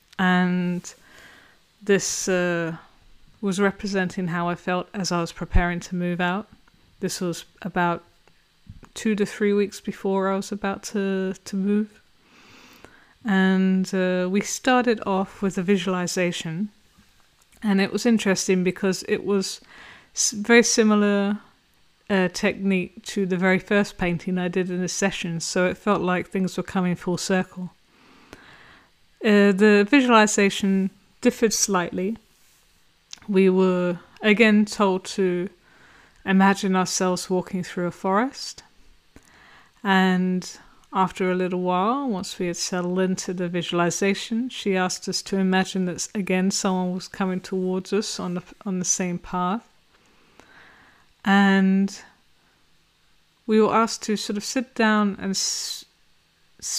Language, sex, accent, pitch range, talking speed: English, female, British, 180-205 Hz, 130 wpm